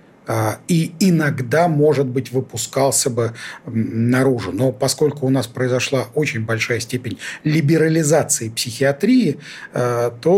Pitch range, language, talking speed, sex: 135-175 Hz, Russian, 105 wpm, male